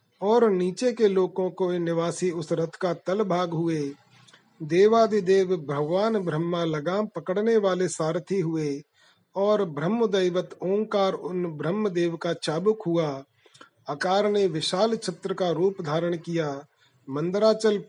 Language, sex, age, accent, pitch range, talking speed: Hindi, male, 30-49, native, 160-195 Hz, 125 wpm